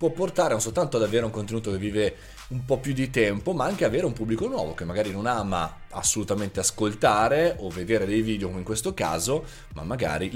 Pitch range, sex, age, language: 95-130 Hz, male, 30-49, Italian